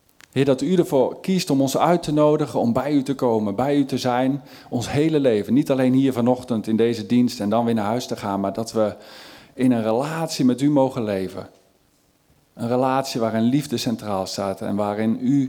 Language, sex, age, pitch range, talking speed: Dutch, male, 50-69, 110-135 Hz, 215 wpm